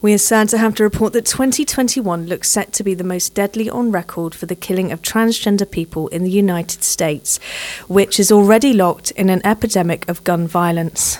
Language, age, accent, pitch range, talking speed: English, 40-59, British, 175-215 Hz, 205 wpm